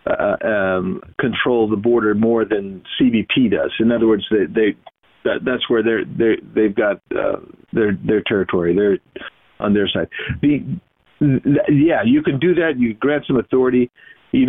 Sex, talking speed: male, 160 wpm